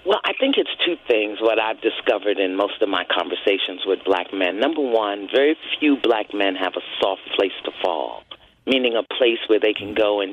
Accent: American